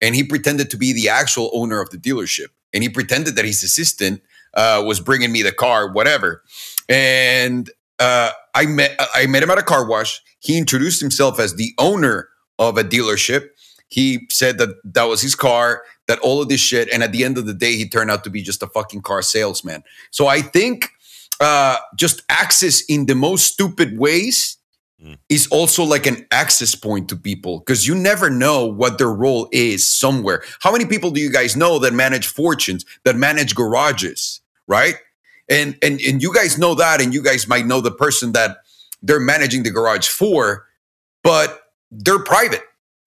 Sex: male